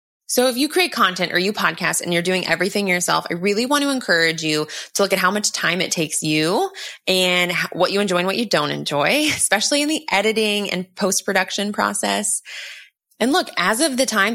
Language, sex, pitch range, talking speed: English, female, 175-220 Hz, 215 wpm